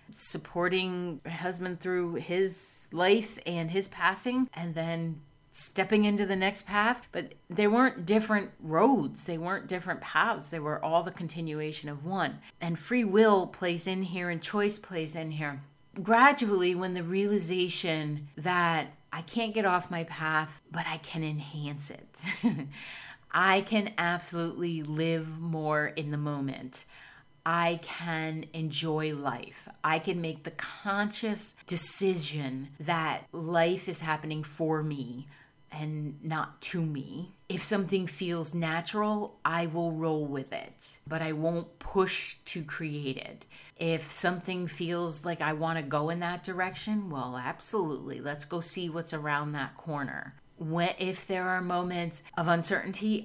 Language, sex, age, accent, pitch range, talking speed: English, female, 30-49, American, 155-185 Hz, 145 wpm